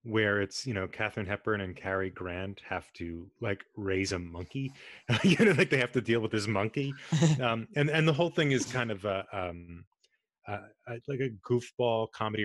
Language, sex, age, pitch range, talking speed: English, male, 30-49, 100-130 Hz, 200 wpm